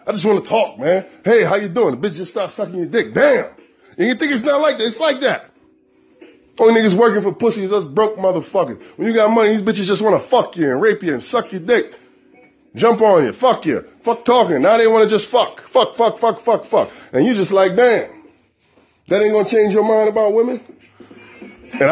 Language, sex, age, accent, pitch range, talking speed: English, male, 20-39, American, 190-220 Hz, 240 wpm